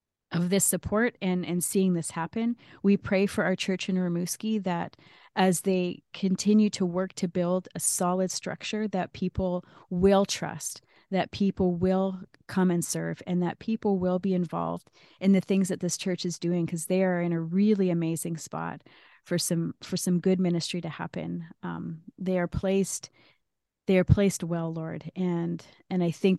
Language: English